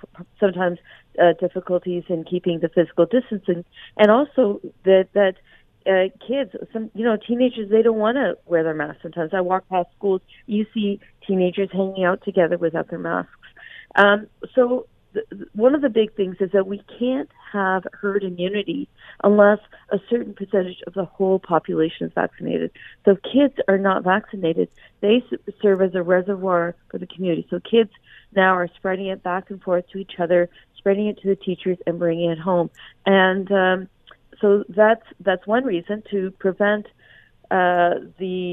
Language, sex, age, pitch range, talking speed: English, female, 40-59, 180-215 Hz, 170 wpm